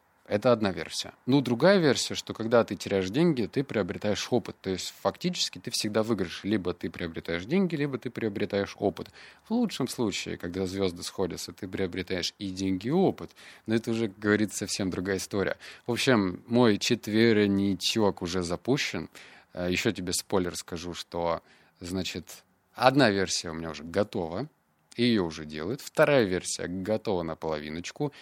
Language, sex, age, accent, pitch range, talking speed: Russian, male, 30-49, native, 90-120 Hz, 155 wpm